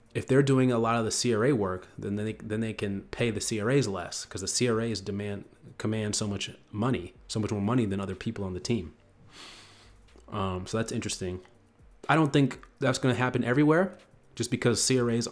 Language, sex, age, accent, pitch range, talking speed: English, male, 30-49, American, 105-130 Hz, 200 wpm